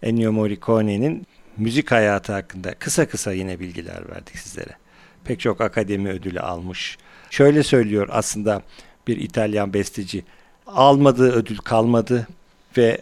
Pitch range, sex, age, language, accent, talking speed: 95-125 Hz, male, 50-69, Turkish, native, 120 wpm